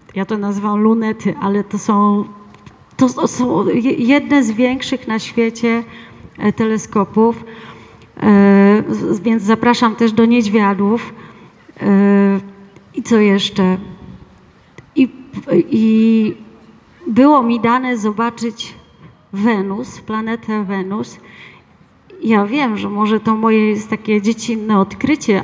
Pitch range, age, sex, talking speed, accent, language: 200-235 Hz, 30-49, female, 100 wpm, native, Polish